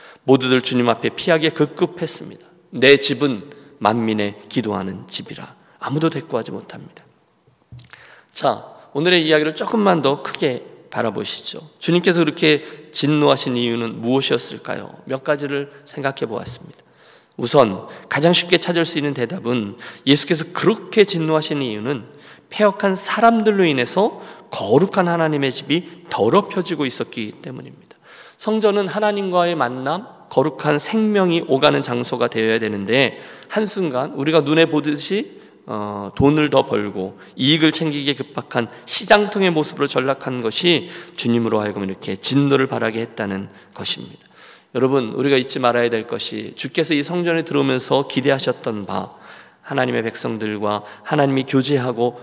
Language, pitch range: Korean, 125-170 Hz